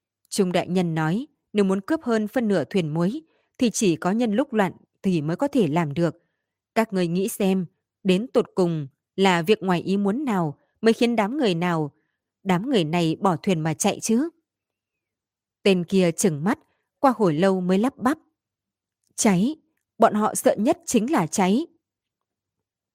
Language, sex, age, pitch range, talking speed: Vietnamese, female, 20-39, 170-230 Hz, 180 wpm